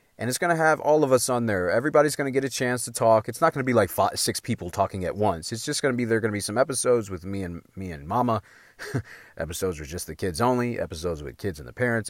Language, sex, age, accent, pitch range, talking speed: English, male, 30-49, American, 100-125 Hz, 300 wpm